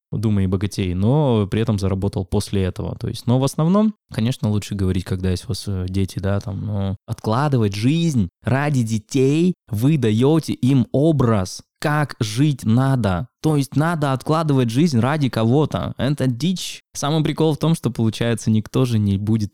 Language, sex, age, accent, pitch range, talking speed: Russian, male, 20-39, native, 100-130 Hz, 170 wpm